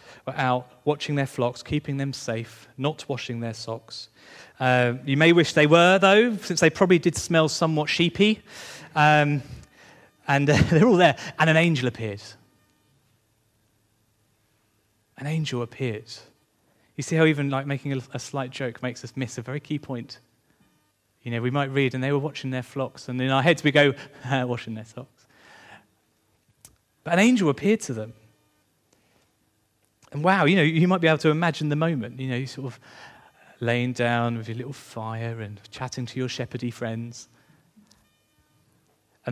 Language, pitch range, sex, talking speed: English, 115-150 Hz, male, 170 wpm